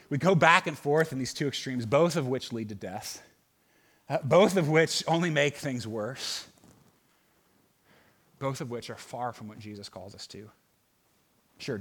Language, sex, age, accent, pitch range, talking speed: English, male, 30-49, American, 115-165 Hz, 175 wpm